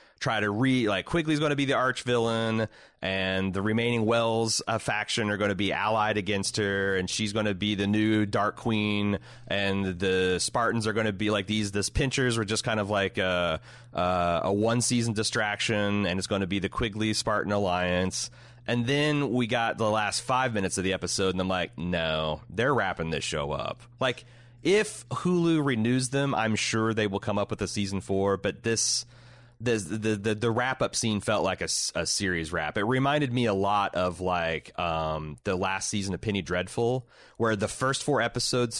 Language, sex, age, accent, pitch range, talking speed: English, male, 30-49, American, 100-120 Hz, 205 wpm